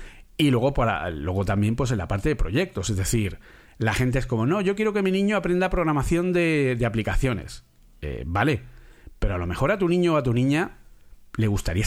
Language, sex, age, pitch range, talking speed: Spanish, male, 40-59, 110-155 Hz, 215 wpm